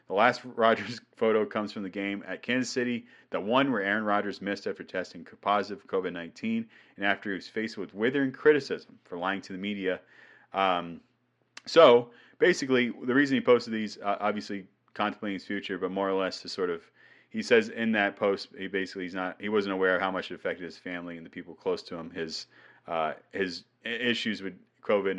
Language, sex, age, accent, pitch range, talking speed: English, male, 30-49, American, 95-130 Hz, 200 wpm